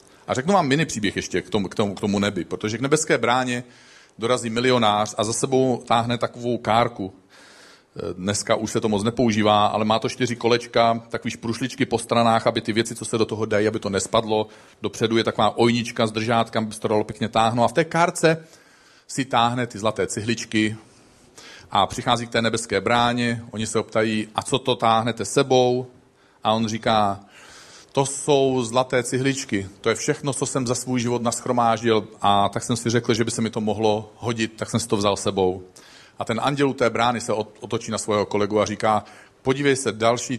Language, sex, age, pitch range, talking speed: Czech, male, 40-59, 110-135 Hz, 200 wpm